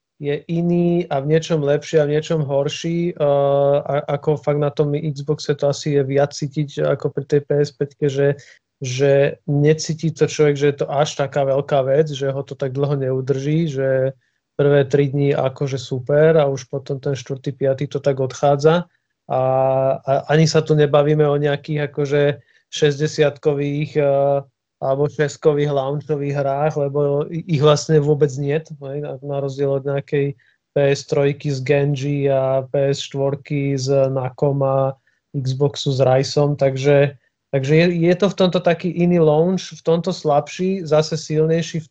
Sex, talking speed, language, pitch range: male, 150 wpm, Slovak, 140-155 Hz